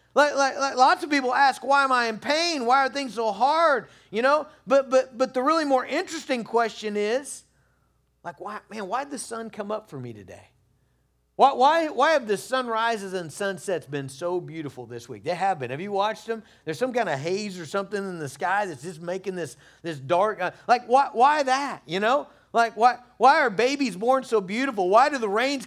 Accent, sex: American, male